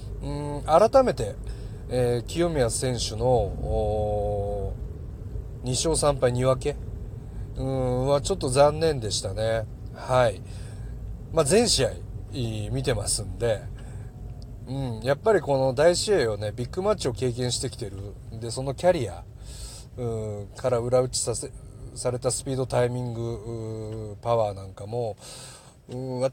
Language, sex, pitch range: Japanese, male, 110-145 Hz